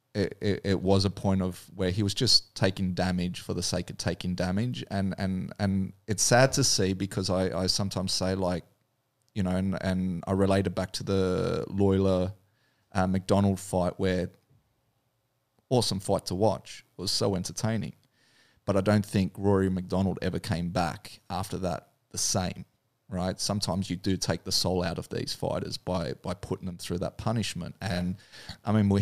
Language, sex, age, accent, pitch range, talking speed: English, male, 30-49, Australian, 95-115 Hz, 185 wpm